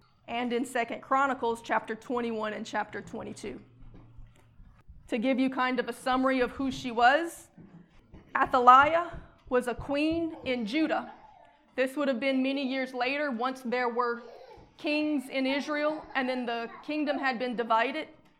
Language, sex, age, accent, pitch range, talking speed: English, female, 30-49, American, 240-275 Hz, 150 wpm